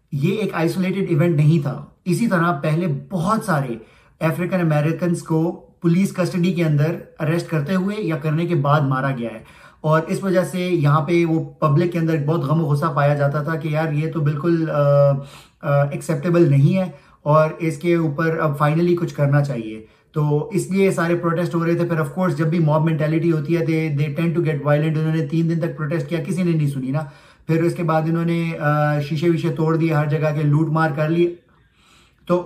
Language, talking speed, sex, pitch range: Urdu, 200 wpm, male, 150-175 Hz